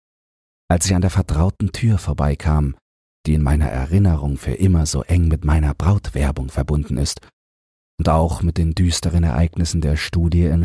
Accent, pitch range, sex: German, 70-90 Hz, male